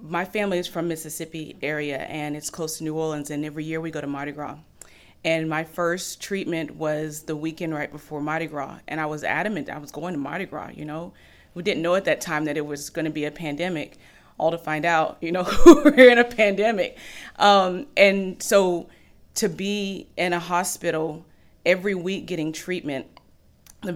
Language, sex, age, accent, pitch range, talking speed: English, female, 30-49, American, 150-180 Hz, 200 wpm